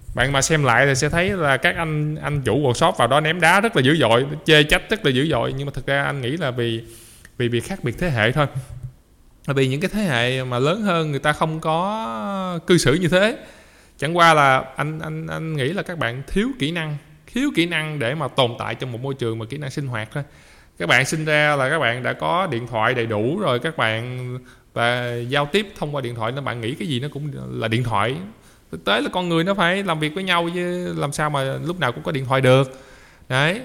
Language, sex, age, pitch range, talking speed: Vietnamese, male, 20-39, 130-170 Hz, 260 wpm